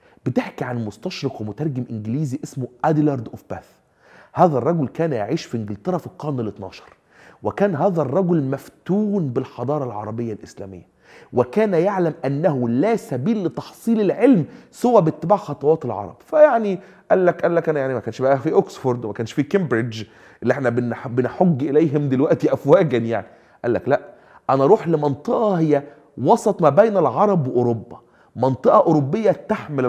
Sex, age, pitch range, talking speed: male, 30-49, 120-170 Hz, 150 wpm